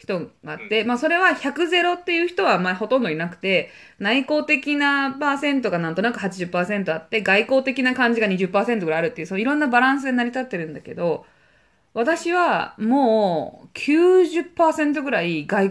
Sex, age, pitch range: female, 20-39, 185-285 Hz